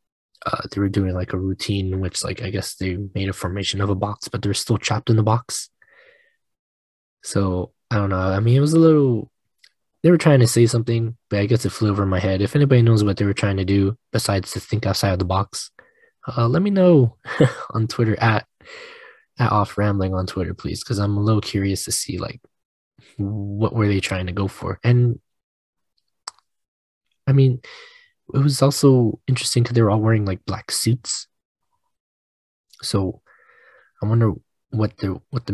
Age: 20-39